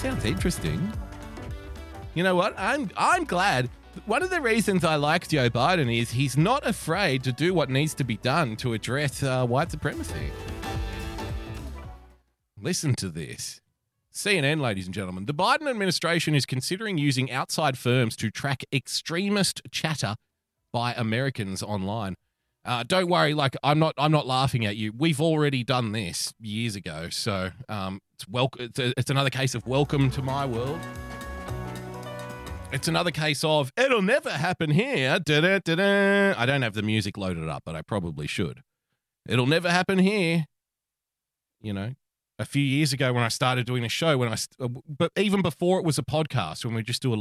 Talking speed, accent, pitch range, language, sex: 170 wpm, Australian, 110-155 Hz, English, male